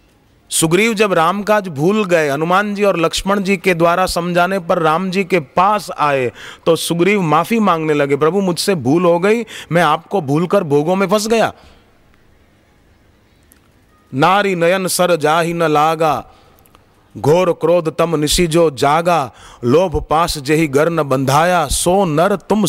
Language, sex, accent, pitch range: Hindi, male, native, 150-190 Hz